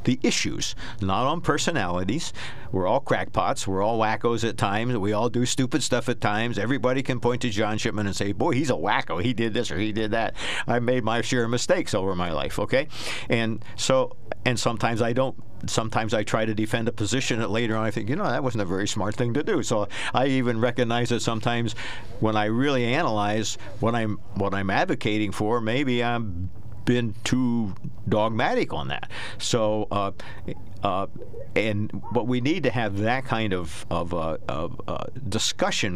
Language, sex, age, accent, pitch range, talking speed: English, male, 50-69, American, 105-125 Hz, 195 wpm